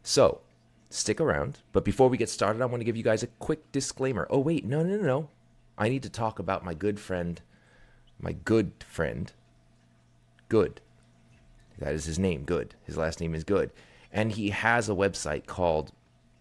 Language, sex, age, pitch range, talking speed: English, male, 30-49, 70-105 Hz, 185 wpm